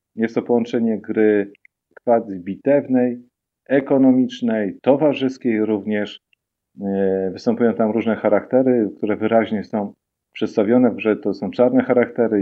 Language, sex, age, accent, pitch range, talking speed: Polish, male, 40-59, native, 105-125 Hz, 100 wpm